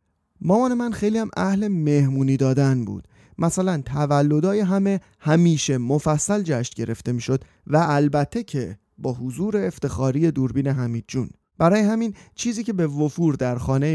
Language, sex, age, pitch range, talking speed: Persian, male, 30-49, 125-175 Hz, 140 wpm